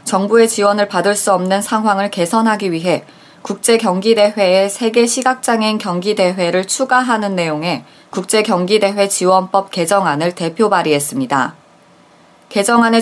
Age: 20-39